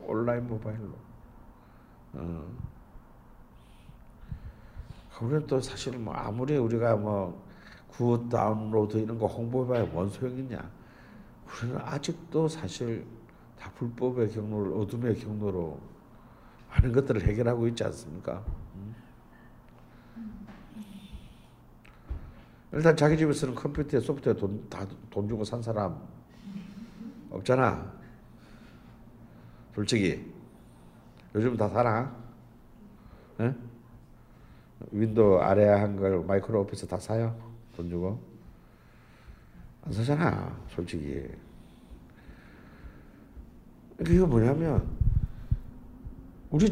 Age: 60-79